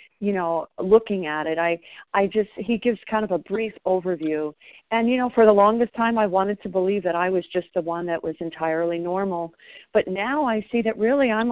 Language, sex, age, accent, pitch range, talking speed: English, female, 50-69, American, 175-215 Hz, 225 wpm